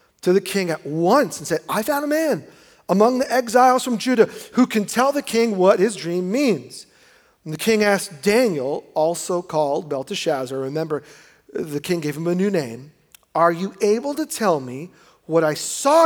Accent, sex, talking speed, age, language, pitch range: American, male, 185 wpm, 40-59, English, 150-230 Hz